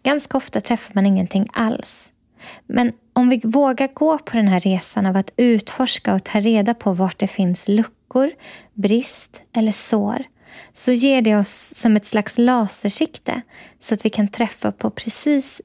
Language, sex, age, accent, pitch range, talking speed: Swedish, female, 20-39, native, 210-250 Hz, 170 wpm